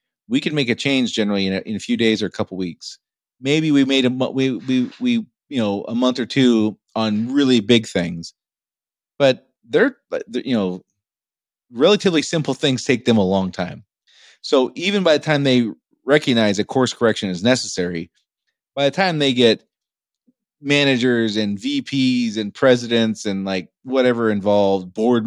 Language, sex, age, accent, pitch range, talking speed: English, male, 30-49, American, 105-140 Hz, 175 wpm